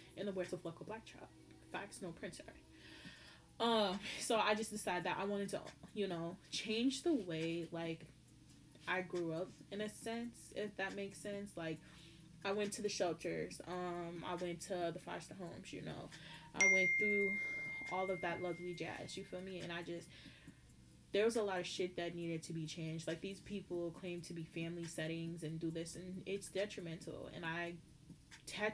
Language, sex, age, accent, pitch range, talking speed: English, female, 10-29, American, 165-200 Hz, 190 wpm